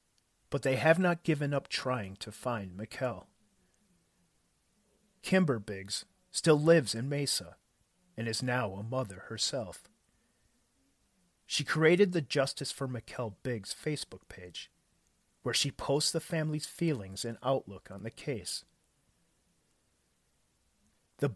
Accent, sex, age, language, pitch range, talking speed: American, male, 40-59, English, 95-145 Hz, 120 wpm